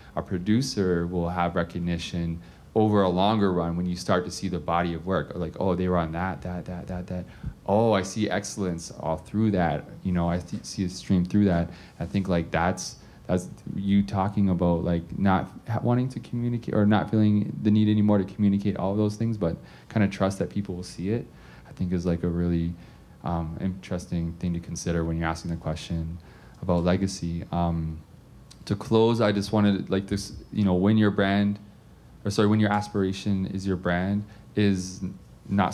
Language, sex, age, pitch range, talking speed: English, male, 20-39, 90-105 Hz, 200 wpm